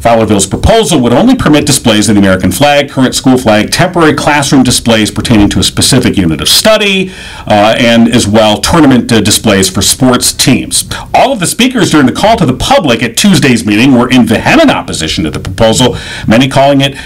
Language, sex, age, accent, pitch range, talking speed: English, male, 50-69, American, 105-145 Hz, 195 wpm